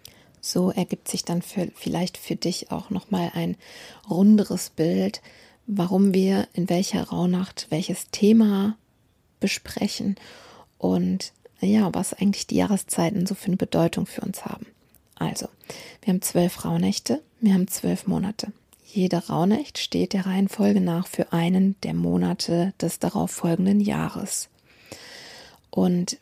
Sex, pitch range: female, 180-210 Hz